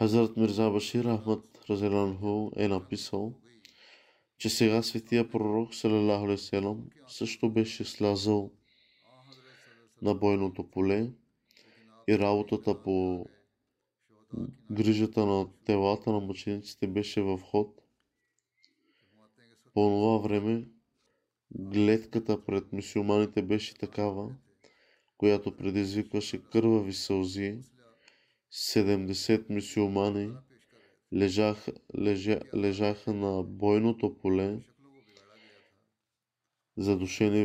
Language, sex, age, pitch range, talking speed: Bulgarian, male, 20-39, 100-115 Hz, 80 wpm